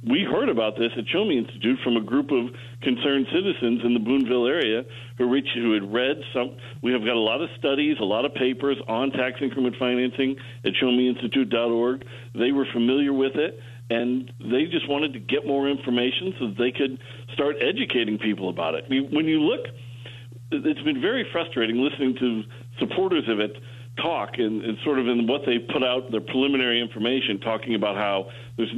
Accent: American